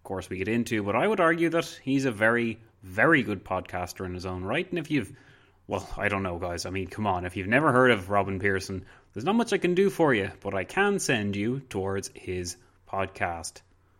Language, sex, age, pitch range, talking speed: English, male, 20-39, 100-155 Hz, 235 wpm